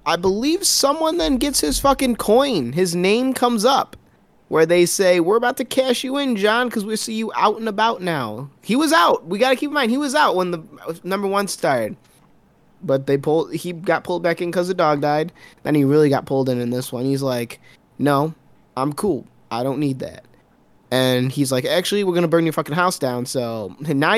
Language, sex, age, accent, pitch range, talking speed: English, male, 20-39, American, 135-205 Hz, 225 wpm